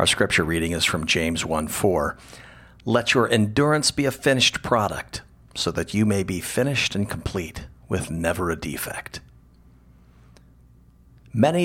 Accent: American